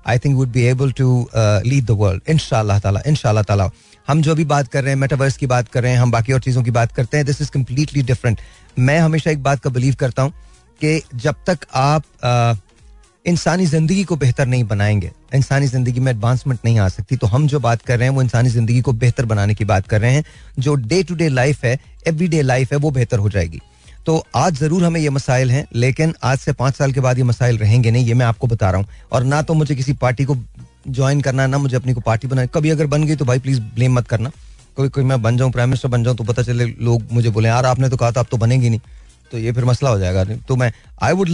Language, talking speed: Hindi, 260 wpm